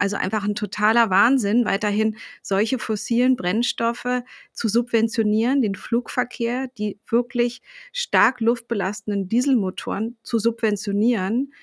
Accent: German